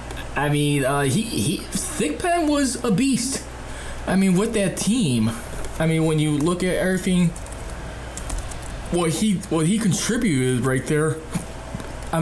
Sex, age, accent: male, 20-39, American